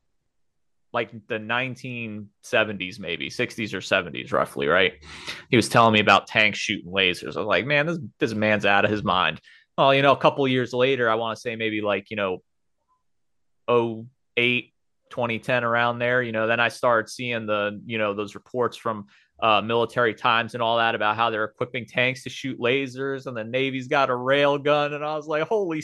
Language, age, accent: English, 30-49, American